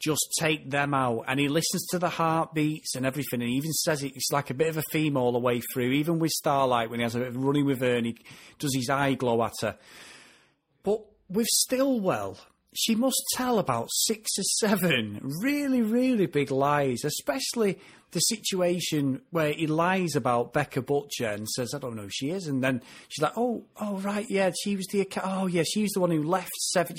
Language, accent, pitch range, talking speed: English, British, 135-195 Hz, 215 wpm